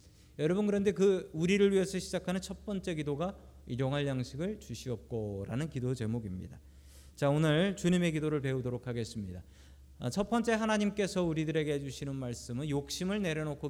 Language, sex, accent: Korean, male, native